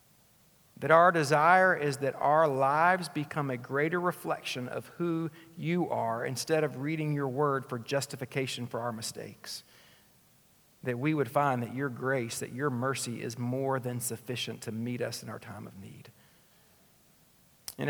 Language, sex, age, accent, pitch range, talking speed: English, male, 50-69, American, 120-150 Hz, 160 wpm